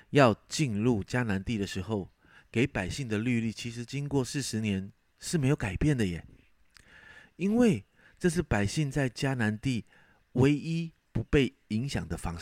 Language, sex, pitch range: Chinese, male, 100-145 Hz